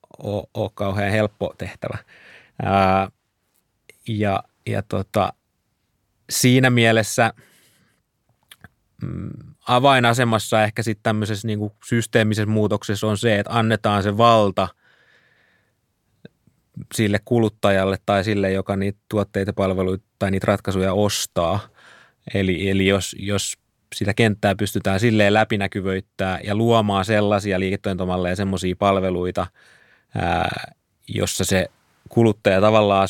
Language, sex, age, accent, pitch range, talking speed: Finnish, male, 30-49, native, 95-110 Hz, 105 wpm